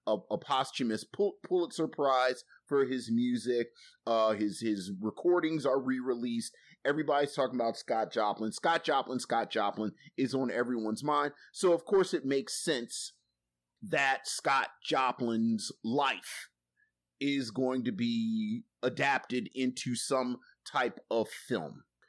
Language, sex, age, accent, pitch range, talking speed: English, male, 30-49, American, 125-150 Hz, 130 wpm